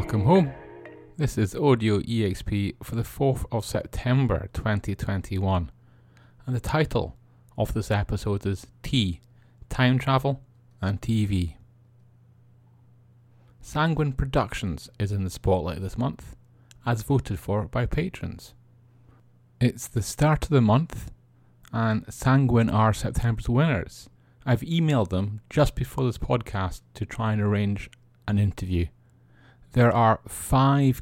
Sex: male